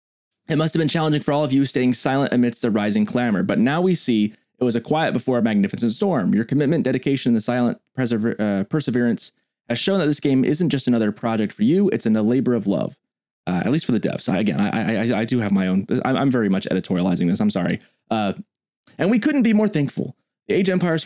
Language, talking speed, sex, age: English, 240 wpm, male, 20-39